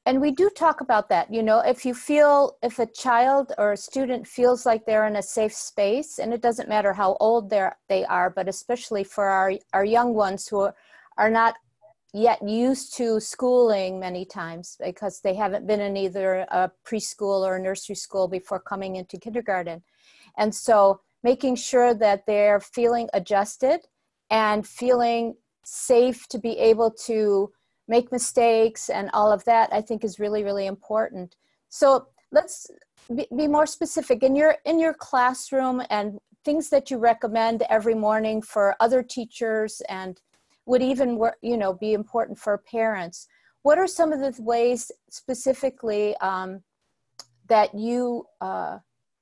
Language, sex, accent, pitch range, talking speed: English, female, American, 205-250 Hz, 160 wpm